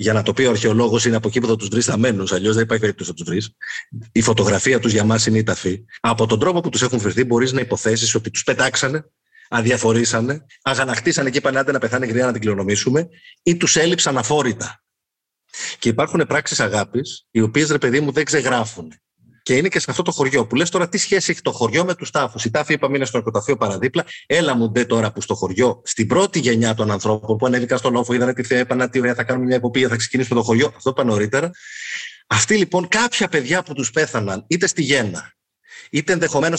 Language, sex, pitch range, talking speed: Greek, male, 115-155 Hz, 225 wpm